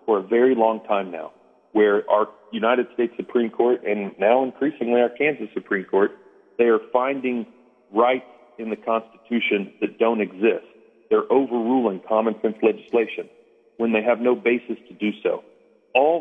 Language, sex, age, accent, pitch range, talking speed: English, male, 40-59, American, 115-145 Hz, 160 wpm